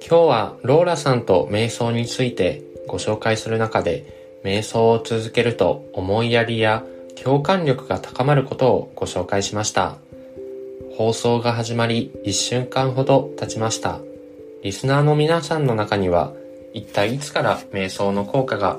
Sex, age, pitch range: male, 20-39, 100-130 Hz